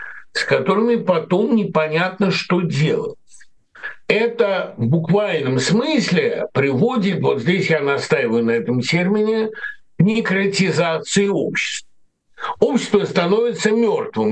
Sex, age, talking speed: male, 60-79, 100 wpm